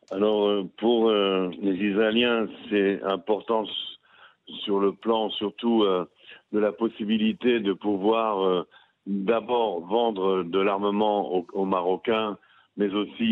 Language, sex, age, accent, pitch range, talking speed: French, male, 50-69, French, 100-115 Hz, 120 wpm